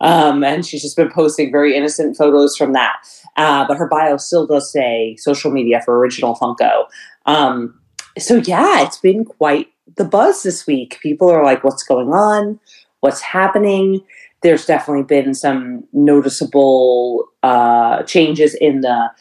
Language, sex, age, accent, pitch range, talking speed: English, female, 30-49, American, 135-160 Hz, 155 wpm